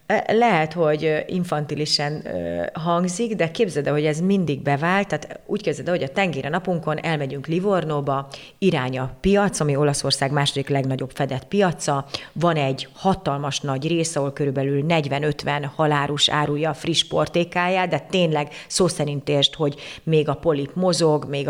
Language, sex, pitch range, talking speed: Hungarian, female, 145-185 Hz, 140 wpm